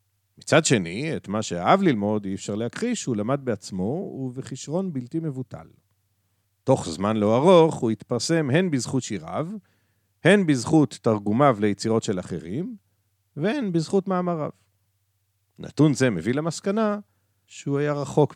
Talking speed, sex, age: 130 wpm, male, 50-69